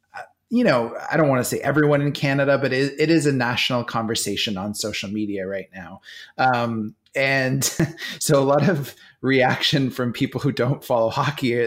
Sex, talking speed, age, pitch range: male, 175 wpm, 20-39, 115-145 Hz